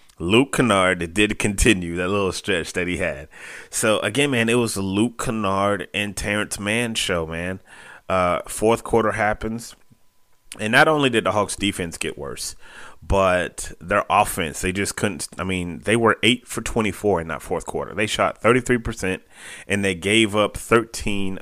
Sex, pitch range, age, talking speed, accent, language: male, 90-110 Hz, 30-49, 170 wpm, American, English